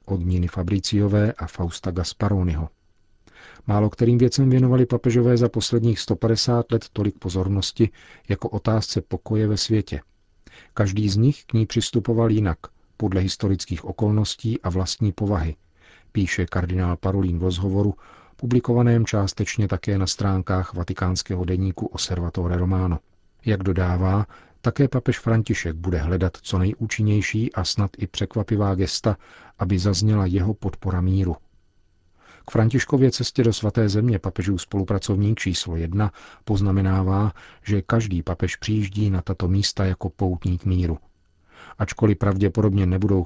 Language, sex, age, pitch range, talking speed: Czech, male, 40-59, 95-110 Hz, 125 wpm